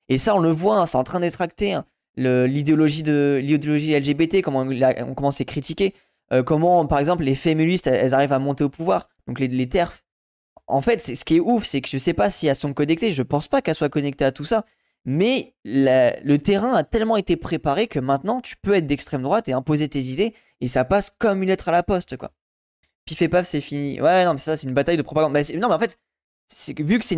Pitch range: 140-185 Hz